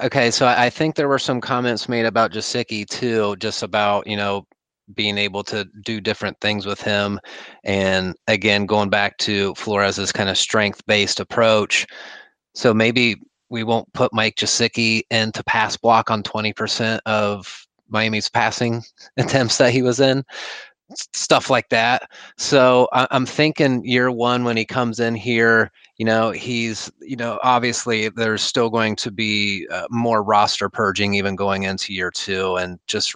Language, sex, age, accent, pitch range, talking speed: English, male, 30-49, American, 100-120 Hz, 160 wpm